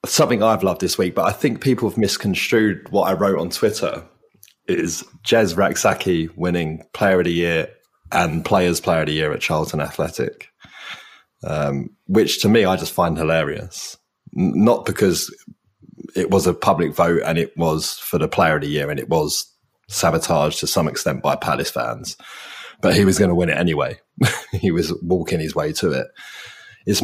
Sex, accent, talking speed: male, British, 190 wpm